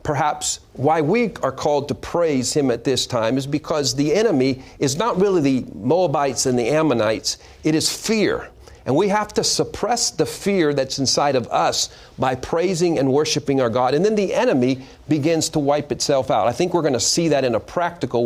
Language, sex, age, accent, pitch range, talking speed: English, male, 50-69, American, 130-165 Hz, 205 wpm